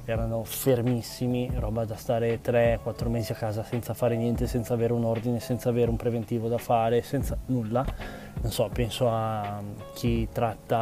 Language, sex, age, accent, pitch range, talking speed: Italian, male, 20-39, native, 115-145 Hz, 165 wpm